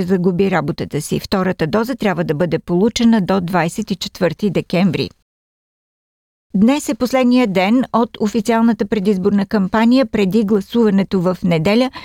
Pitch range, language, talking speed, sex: 195-235 Hz, Bulgarian, 120 wpm, female